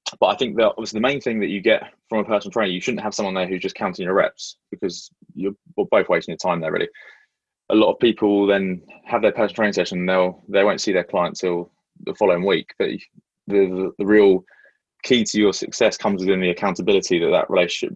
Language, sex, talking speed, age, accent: English, male, 235 wpm, 20-39, British